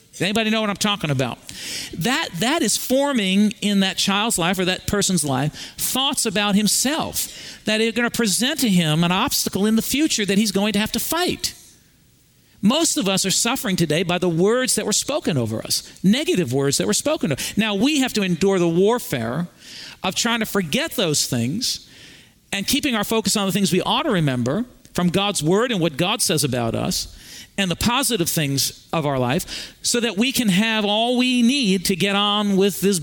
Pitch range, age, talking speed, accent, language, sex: 170-225 Hz, 50-69, 205 wpm, American, English, male